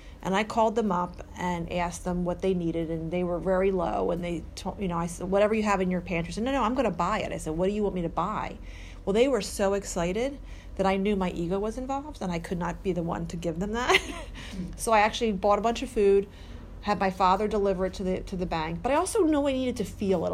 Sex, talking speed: female, 285 wpm